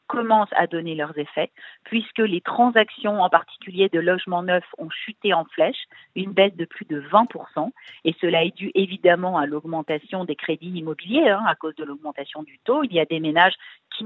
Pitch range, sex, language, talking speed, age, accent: 155-200 Hz, female, French, 195 wpm, 50-69, French